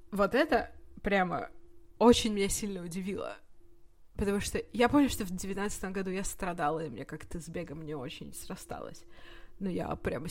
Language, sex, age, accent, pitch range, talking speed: Russian, female, 20-39, native, 160-210 Hz, 165 wpm